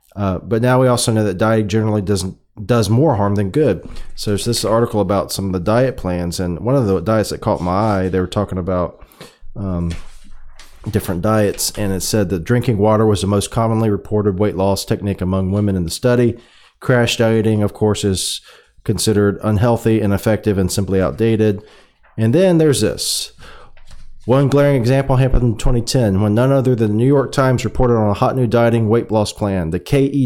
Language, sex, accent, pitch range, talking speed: English, male, American, 100-125 Hz, 200 wpm